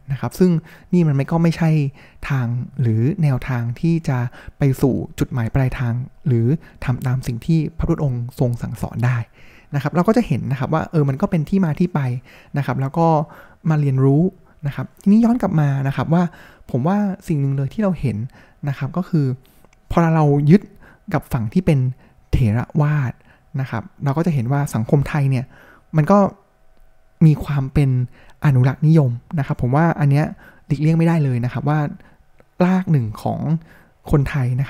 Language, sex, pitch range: Thai, male, 125-160 Hz